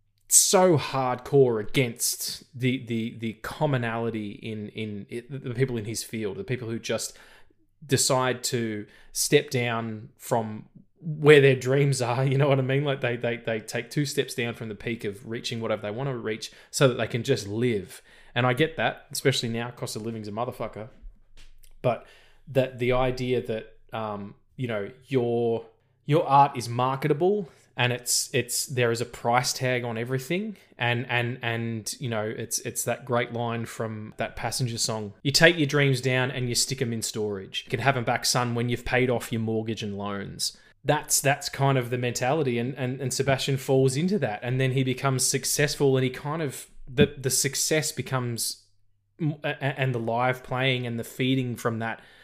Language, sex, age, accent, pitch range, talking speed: English, male, 20-39, Australian, 115-135 Hz, 190 wpm